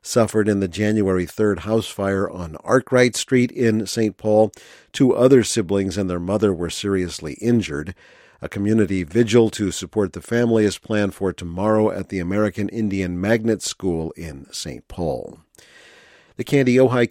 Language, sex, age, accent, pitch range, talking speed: English, male, 50-69, American, 100-120 Hz, 155 wpm